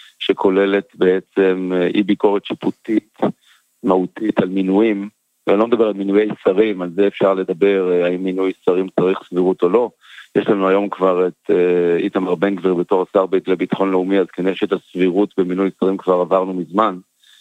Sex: male